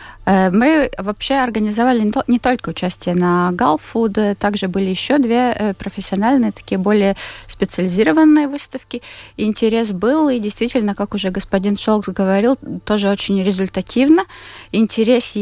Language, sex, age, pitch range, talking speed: Russian, female, 20-39, 190-220 Hz, 115 wpm